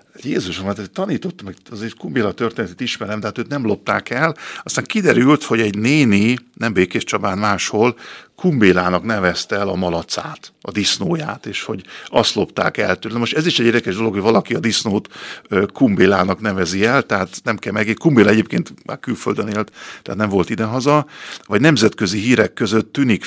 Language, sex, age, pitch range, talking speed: Hungarian, male, 50-69, 95-120 Hz, 180 wpm